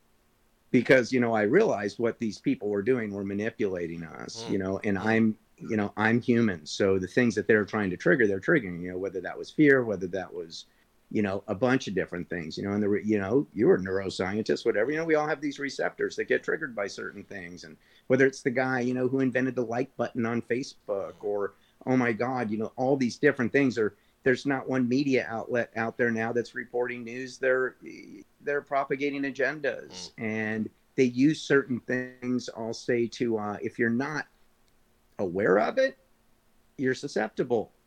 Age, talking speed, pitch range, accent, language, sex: 50-69, 200 wpm, 110-135 Hz, American, English, male